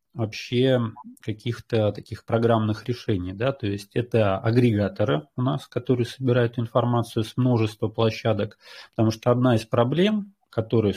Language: Russian